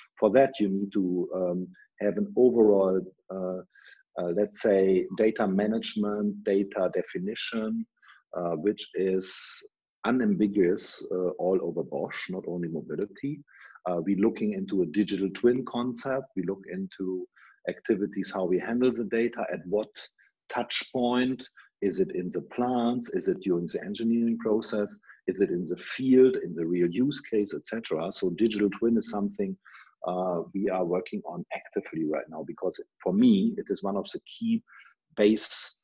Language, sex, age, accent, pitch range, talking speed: English, male, 50-69, German, 95-125 Hz, 155 wpm